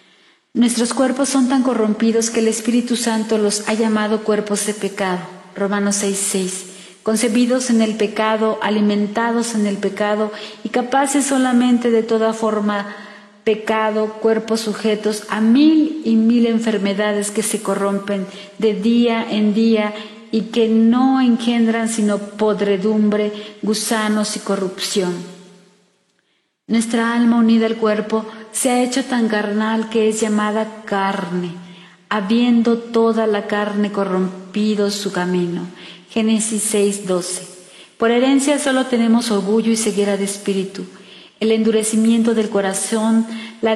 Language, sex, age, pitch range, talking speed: Spanish, female, 40-59, 200-225 Hz, 125 wpm